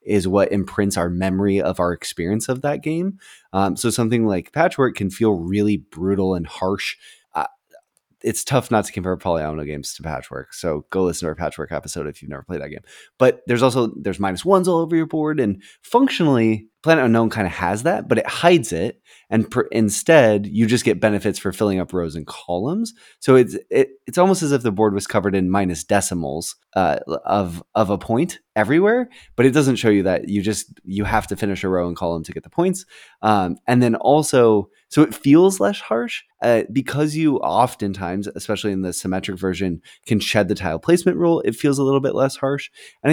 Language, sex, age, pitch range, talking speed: English, male, 20-39, 95-140 Hz, 210 wpm